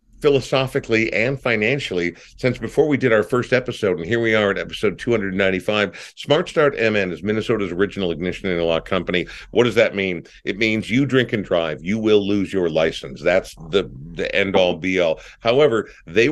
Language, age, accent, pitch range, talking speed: English, 50-69, American, 95-125 Hz, 195 wpm